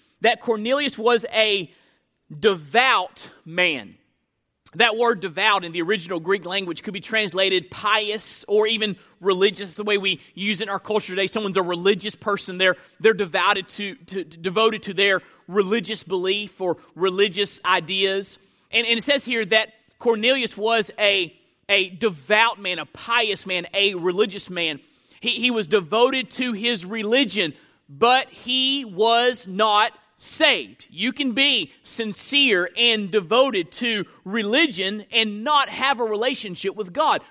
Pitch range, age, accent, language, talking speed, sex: 195-245 Hz, 30-49, American, English, 150 wpm, male